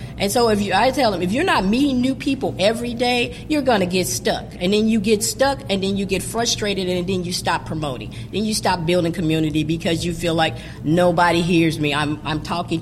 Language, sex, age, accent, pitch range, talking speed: English, female, 40-59, American, 175-235 Hz, 230 wpm